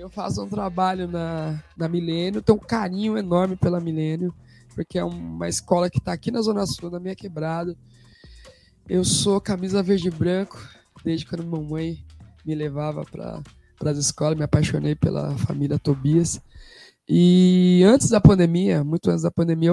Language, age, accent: Portuguese, 20-39, Brazilian